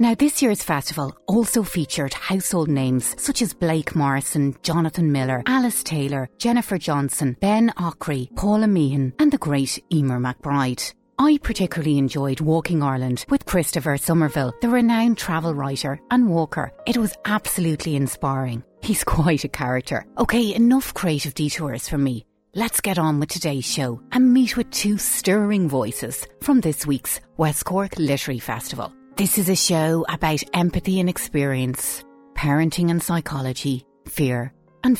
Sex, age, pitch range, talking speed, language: female, 30-49, 140-210 Hz, 150 wpm, English